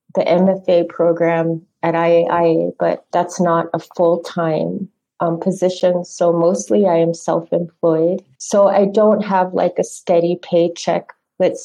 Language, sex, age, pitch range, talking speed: English, female, 30-49, 170-195 Hz, 130 wpm